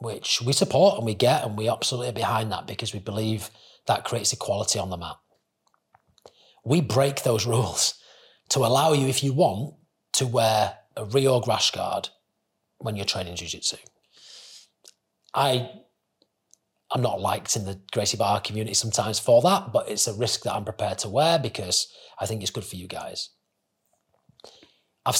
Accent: British